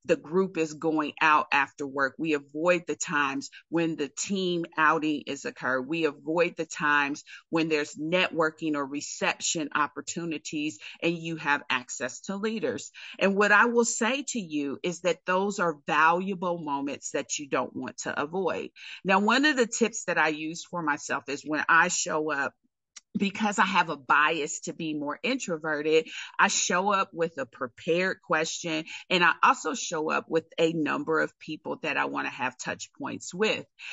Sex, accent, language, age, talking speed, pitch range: female, American, English, 40-59, 180 wpm, 145-180 Hz